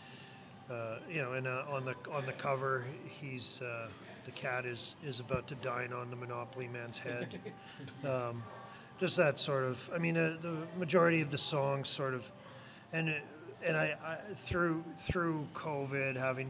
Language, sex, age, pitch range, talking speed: English, male, 40-59, 120-140 Hz, 165 wpm